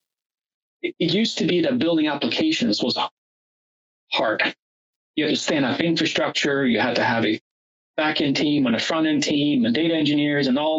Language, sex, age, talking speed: English, male, 30-49, 185 wpm